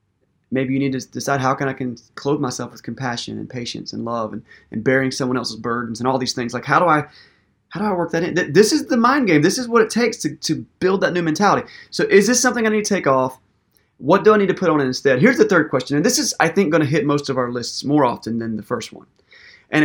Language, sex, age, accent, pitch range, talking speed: English, male, 30-49, American, 125-190 Hz, 285 wpm